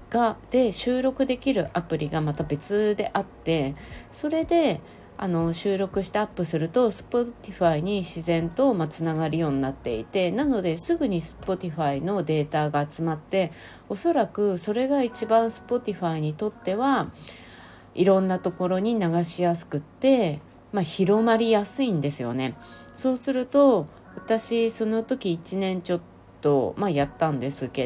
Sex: female